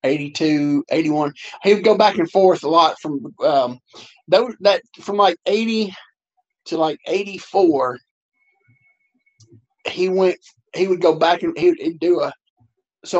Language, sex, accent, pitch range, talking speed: English, male, American, 145-215 Hz, 145 wpm